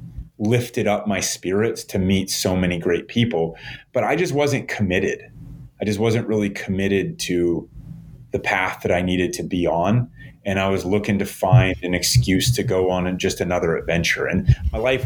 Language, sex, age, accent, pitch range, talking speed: English, male, 30-49, American, 95-125 Hz, 185 wpm